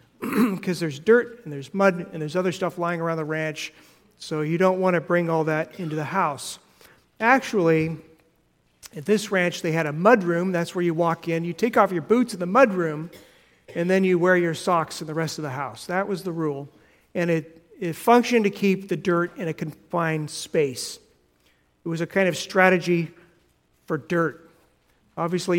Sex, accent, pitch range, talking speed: male, American, 155-185 Hz, 200 wpm